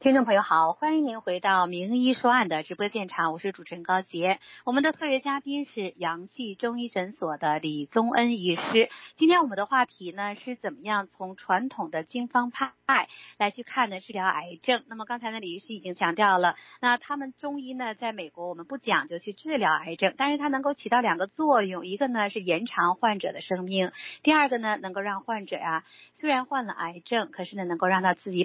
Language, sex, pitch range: Chinese, female, 185-270 Hz